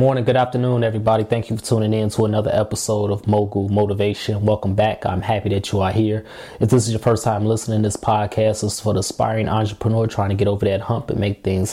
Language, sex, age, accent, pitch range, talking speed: English, male, 20-39, American, 100-120 Hz, 235 wpm